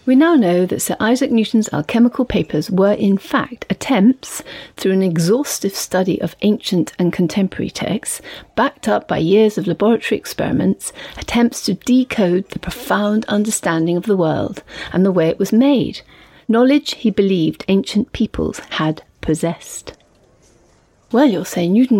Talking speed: 150 wpm